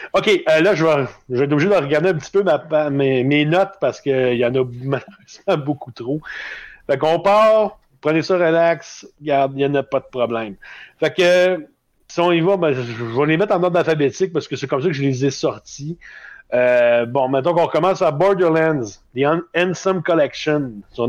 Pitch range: 130-170 Hz